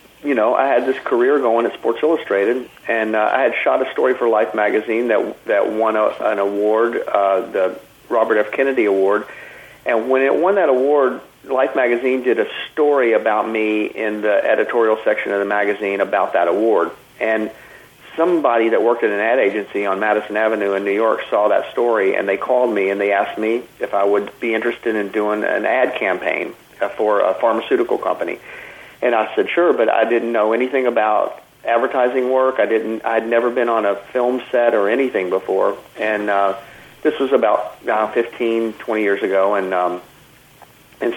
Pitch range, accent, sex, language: 105-125 Hz, American, male, English